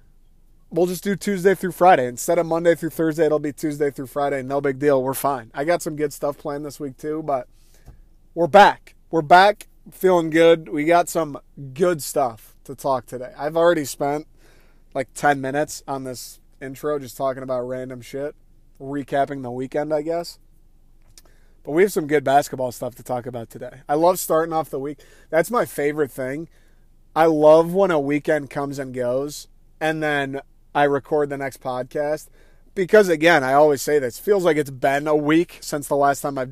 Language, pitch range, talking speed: English, 135-155 Hz, 190 wpm